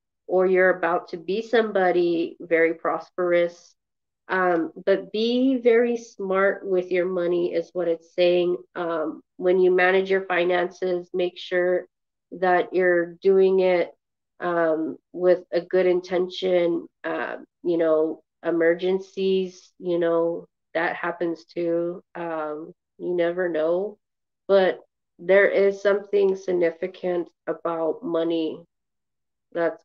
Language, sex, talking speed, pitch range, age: English, female, 115 wpm, 170-195 Hz, 30-49